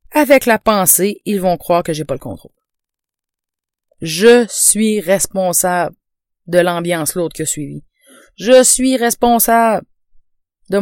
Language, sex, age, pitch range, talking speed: French, female, 30-49, 150-205 Hz, 130 wpm